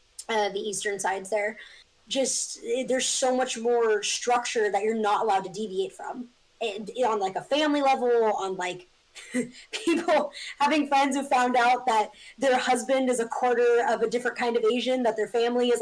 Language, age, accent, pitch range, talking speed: English, 10-29, American, 215-260 Hz, 180 wpm